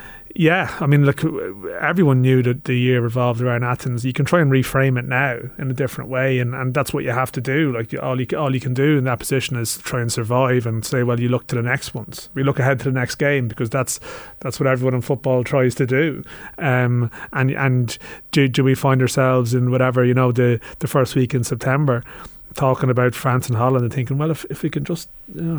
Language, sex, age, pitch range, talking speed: English, male, 30-49, 125-145 Hz, 245 wpm